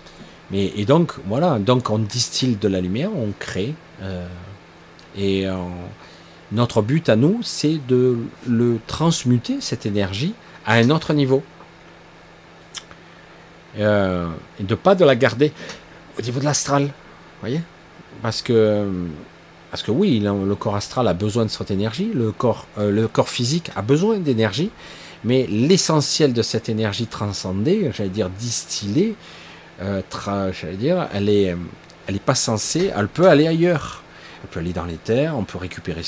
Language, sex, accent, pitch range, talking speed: French, male, French, 100-135 Hz, 155 wpm